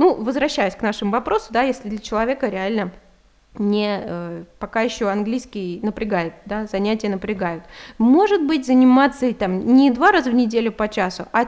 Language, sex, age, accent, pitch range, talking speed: Russian, female, 20-39, native, 205-265 Hz, 155 wpm